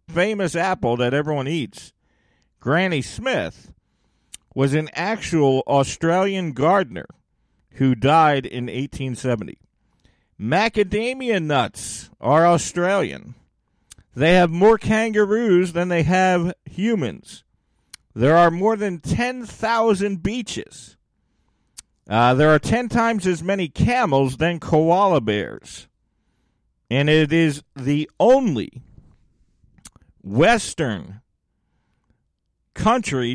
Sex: male